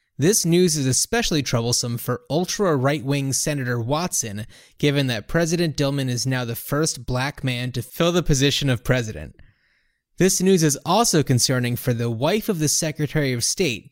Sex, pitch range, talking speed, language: male, 125-160 Hz, 165 wpm, English